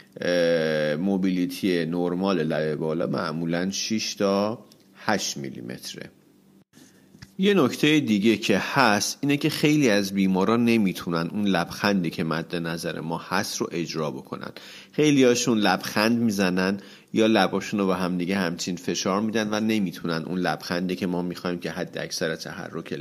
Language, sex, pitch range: Persian, male, 85-110 Hz